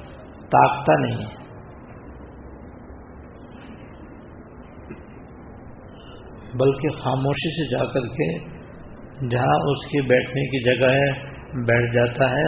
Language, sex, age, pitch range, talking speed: Urdu, male, 60-79, 125-140 Hz, 85 wpm